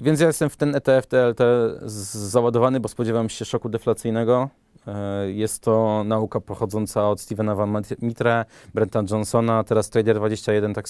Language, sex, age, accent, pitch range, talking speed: Polish, male, 20-39, native, 110-130 Hz, 145 wpm